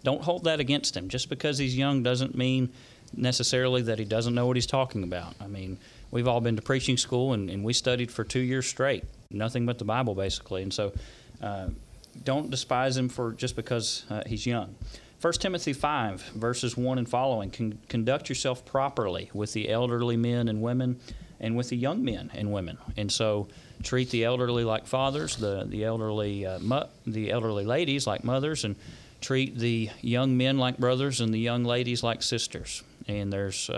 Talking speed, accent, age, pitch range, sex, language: 195 wpm, American, 40-59, 110-130 Hz, male, English